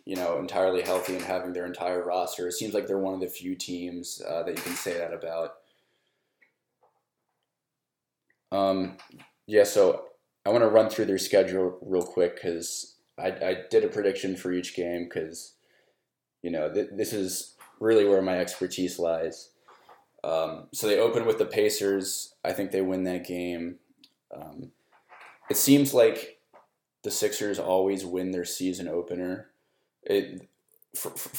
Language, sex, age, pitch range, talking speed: English, male, 20-39, 90-105 Hz, 155 wpm